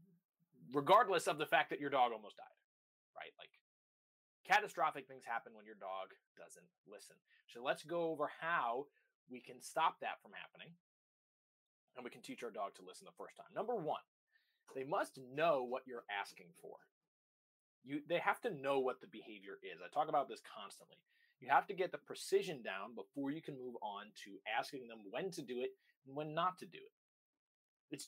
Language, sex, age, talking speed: English, male, 20-39, 190 wpm